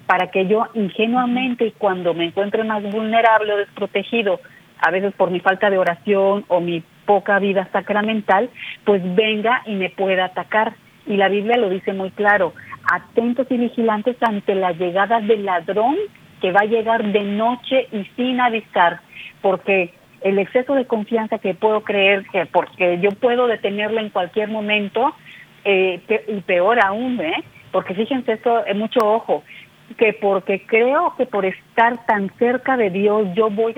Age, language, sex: 40-59, Spanish, female